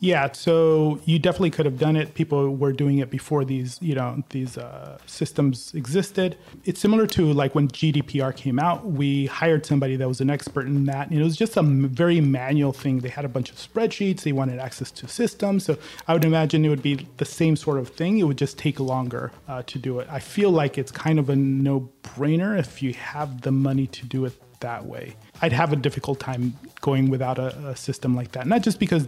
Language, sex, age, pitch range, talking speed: English, male, 30-49, 135-155 Hz, 225 wpm